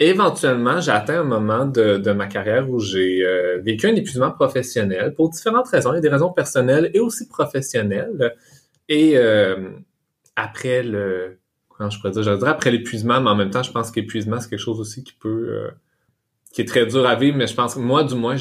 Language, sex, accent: French, male, Canadian